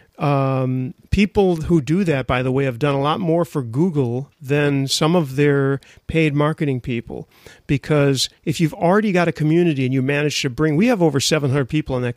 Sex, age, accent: male, 40-59, American